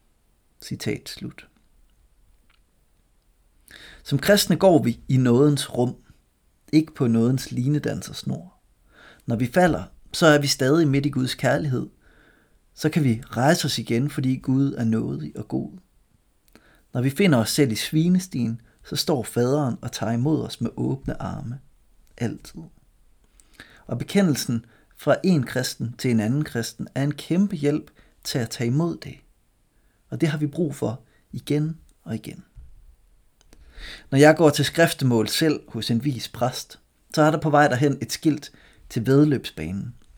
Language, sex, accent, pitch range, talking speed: Danish, male, native, 115-150 Hz, 150 wpm